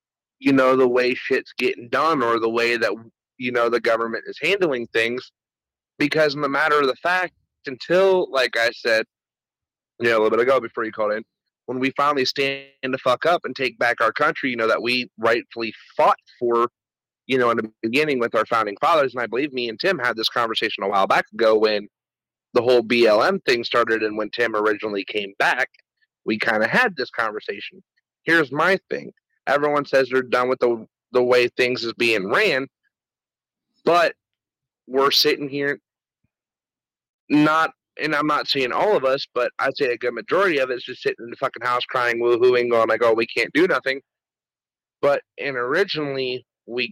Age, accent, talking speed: 30-49, American, 195 wpm